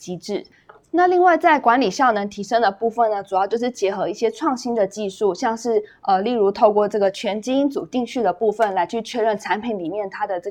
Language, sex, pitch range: Chinese, female, 190-240 Hz